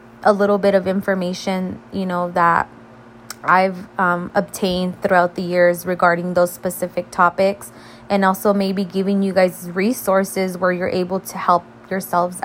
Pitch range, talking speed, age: 175-195 Hz, 150 wpm, 20-39